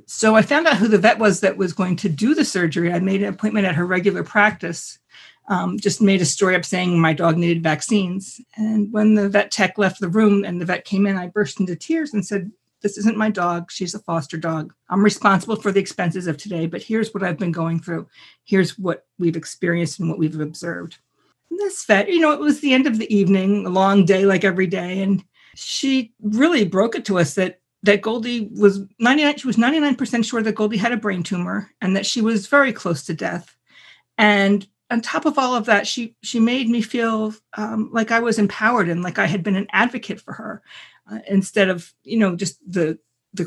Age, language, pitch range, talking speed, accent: 50-69, English, 175-220 Hz, 230 wpm, American